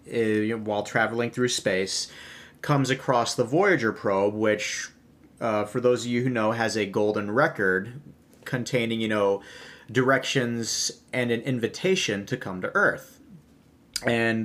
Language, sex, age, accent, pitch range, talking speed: English, male, 30-49, American, 110-125 Hz, 135 wpm